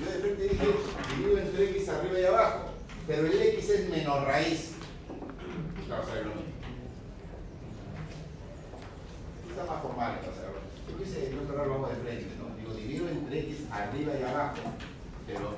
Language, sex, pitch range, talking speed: Spanish, male, 120-170 Hz, 130 wpm